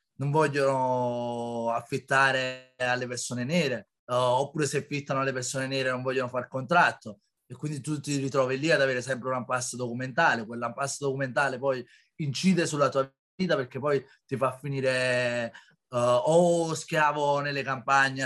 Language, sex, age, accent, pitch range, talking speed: Italian, male, 30-49, native, 130-155 Hz, 155 wpm